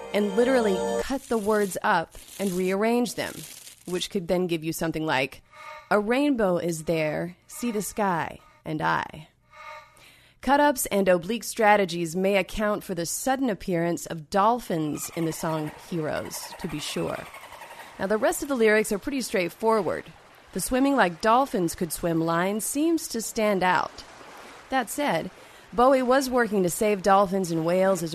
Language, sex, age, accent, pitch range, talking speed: English, female, 30-49, American, 170-220 Hz, 160 wpm